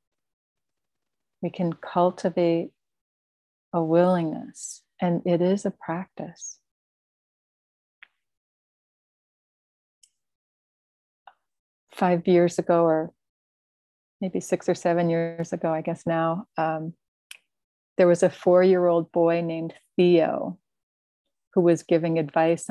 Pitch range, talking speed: 160-185 Hz, 90 wpm